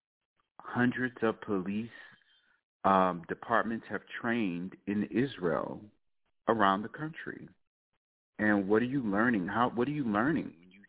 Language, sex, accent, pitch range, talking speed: English, male, American, 90-110 Hz, 130 wpm